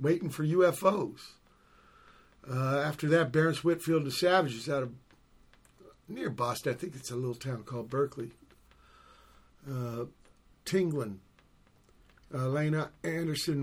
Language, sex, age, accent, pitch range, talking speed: English, male, 50-69, American, 130-180 Hz, 120 wpm